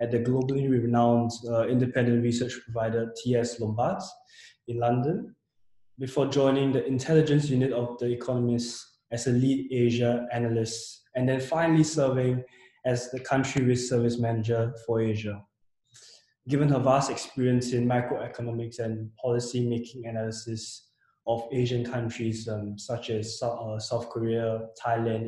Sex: male